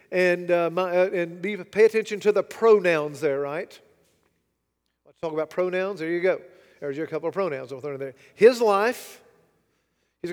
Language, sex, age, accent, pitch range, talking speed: English, male, 40-59, American, 165-215 Hz, 180 wpm